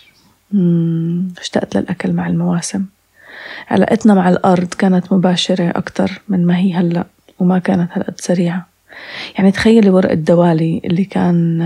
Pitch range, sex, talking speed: 175-205 Hz, female, 125 wpm